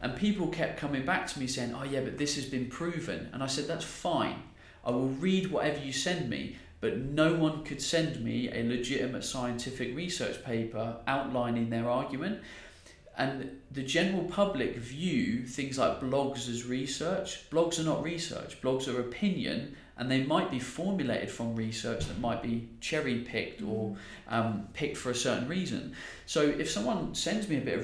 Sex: male